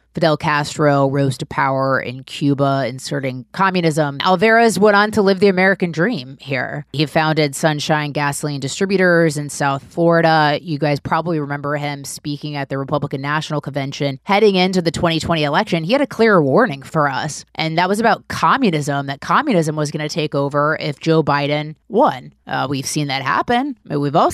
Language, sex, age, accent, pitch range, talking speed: English, female, 30-49, American, 145-175 Hz, 180 wpm